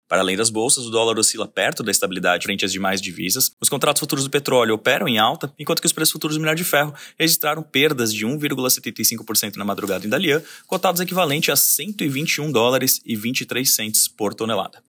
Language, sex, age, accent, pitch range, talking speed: Portuguese, male, 20-39, Brazilian, 105-135 Hz, 195 wpm